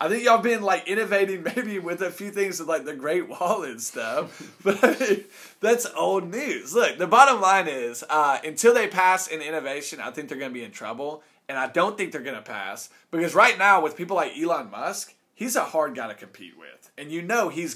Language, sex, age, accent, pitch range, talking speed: English, male, 20-39, American, 160-235 Hz, 240 wpm